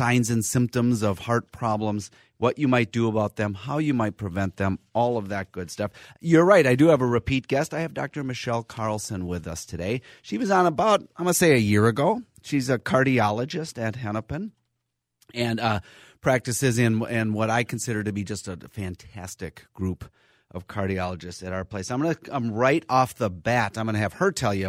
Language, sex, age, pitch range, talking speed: English, male, 30-49, 95-120 Hz, 205 wpm